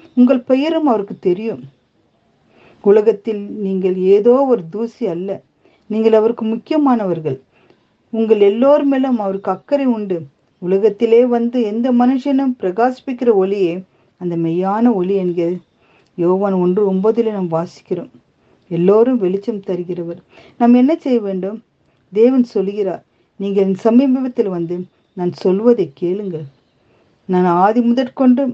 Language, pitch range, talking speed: Tamil, 180-240 Hz, 110 wpm